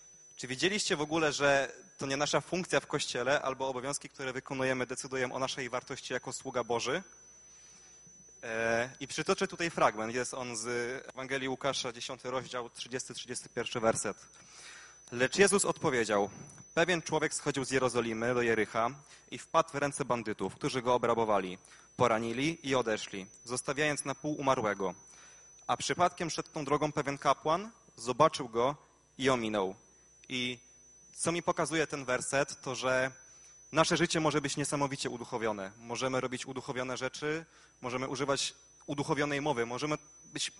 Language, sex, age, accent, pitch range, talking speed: Polish, male, 20-39, native, 125-150 Hz, 140 wpm